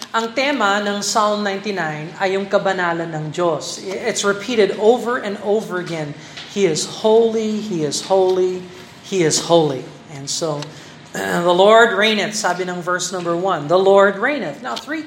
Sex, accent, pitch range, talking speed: male, native, 185-230 Hz, 165 wpm